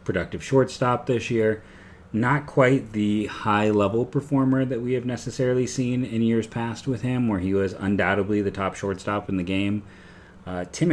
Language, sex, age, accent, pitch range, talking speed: English, male, 30-49, American, 95-110 Hz, 175 wpm